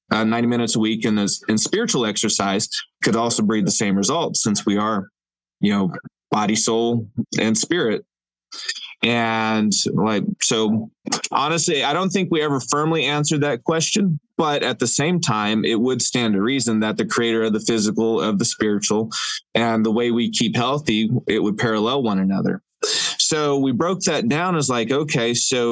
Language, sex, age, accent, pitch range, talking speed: English, male, 20-39, American, 105-135 Hz, 180 wpm